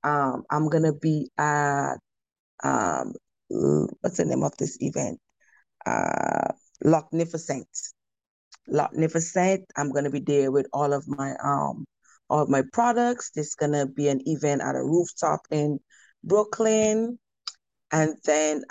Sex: female